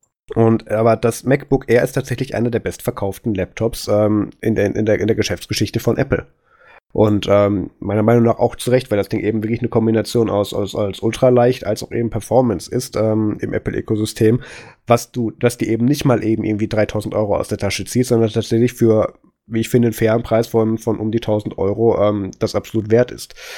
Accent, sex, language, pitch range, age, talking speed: German, male, German, 105-120 Hz, 20-39, 215 wpm